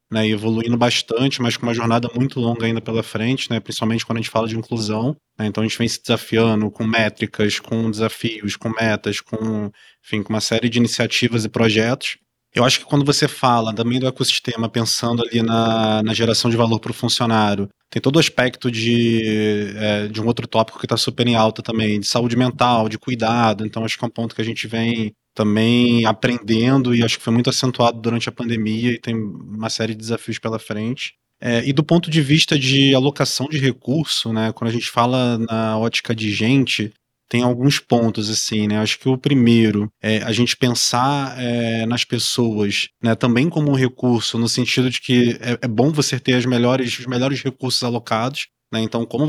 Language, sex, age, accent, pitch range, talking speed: Portuguese, male, 20-39, Brazilian, 110-125 Hz, 205 wpm